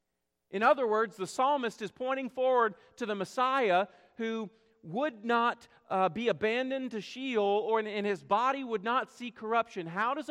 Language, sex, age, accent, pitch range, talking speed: English, male, 40-59, American, 175-225 Hz, 165 wpm